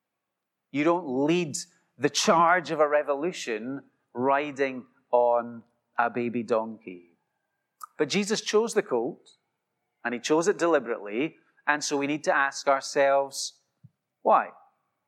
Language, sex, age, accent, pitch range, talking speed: English, male, 40-59, British, 130-160 Hz, 125 wpm